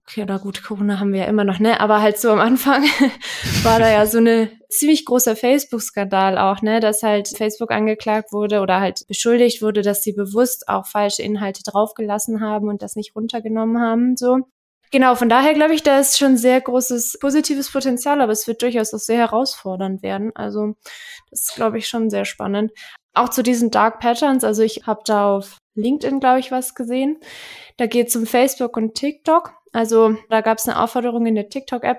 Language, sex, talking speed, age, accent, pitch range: German, female, 200 wpm, 20-39, German, 210-250 Hz